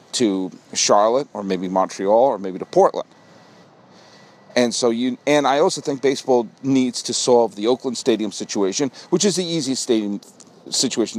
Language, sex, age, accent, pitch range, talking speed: English, male, 50-69, American, 105-140 Hz, 160 wpm